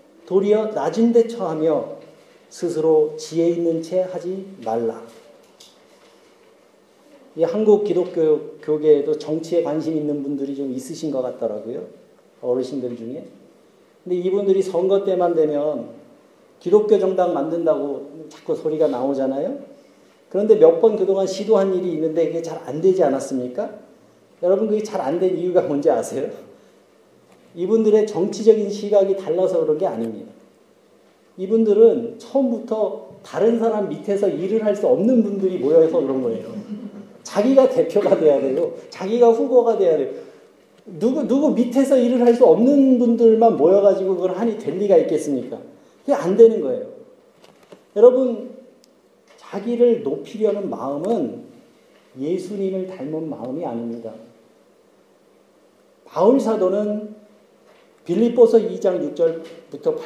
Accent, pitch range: native, 165-240 Hz